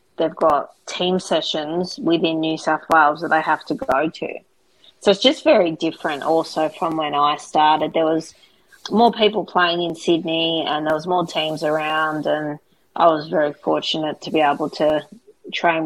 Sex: female